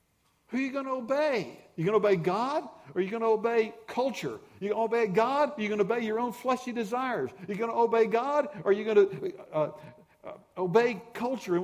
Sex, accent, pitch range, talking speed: male, American, 135-210 Hz, 260 wpm